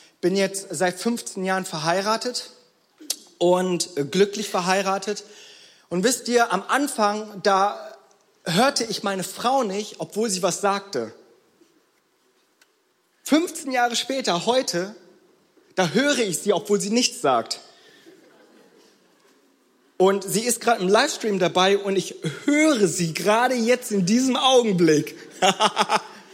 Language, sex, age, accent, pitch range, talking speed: German, male, 30-49, German, 190-240 Hz, 120 wpm